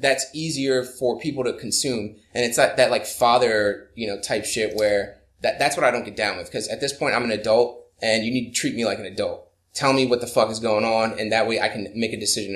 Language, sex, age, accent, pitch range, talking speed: English, male, 20-39, American, 105-130 Hz, 270 wpm